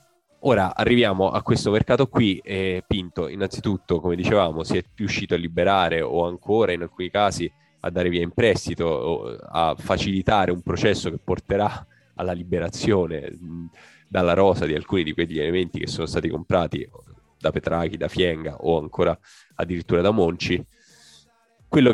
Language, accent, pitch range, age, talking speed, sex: Italian, native, 85-105 Hz, 10-29, 155 wpm, male